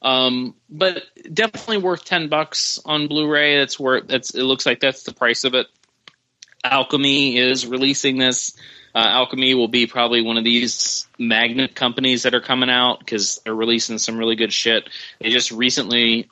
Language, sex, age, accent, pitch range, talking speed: English, male, 30-49, American, 115-135 Hz, 170 wpm